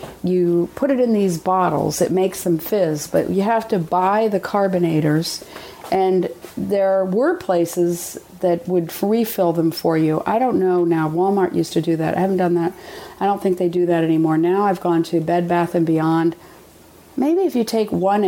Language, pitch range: English, 165-200 Hz